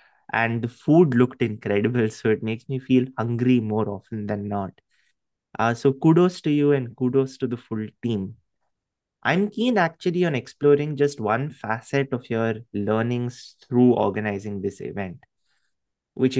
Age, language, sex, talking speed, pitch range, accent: 20-39, English, male, 155 wpm, 110-135 Hz, Indian